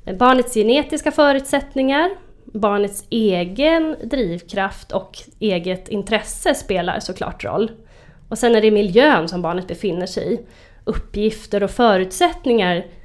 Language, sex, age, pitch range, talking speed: English, female, 30-49, 190-250 Hz, 115 wpm